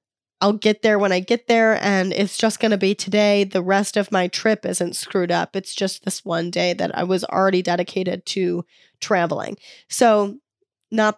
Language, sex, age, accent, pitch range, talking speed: English, female, 10-29, American, 185-215 Hz, 195 wpm